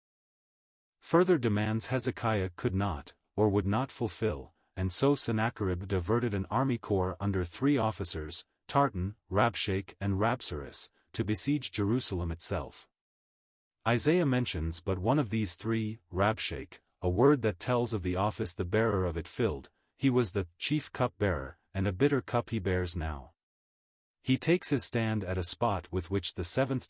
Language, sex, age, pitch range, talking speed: English, male, 40-59, 90-120 Hz, 155 wpm